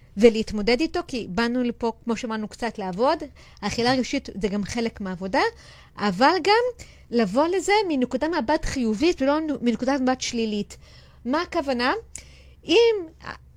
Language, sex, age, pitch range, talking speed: Hebrew, female, 30-49, 235-315 Hz, 130 wpm